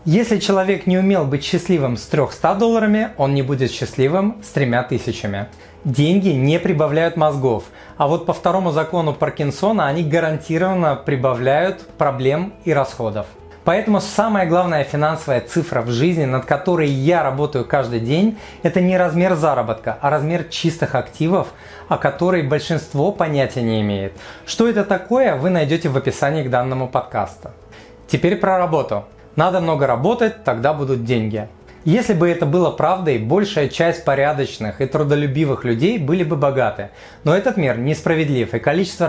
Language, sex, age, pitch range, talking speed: Russian, male, 30-49, 135-185 Hz, 145 wpm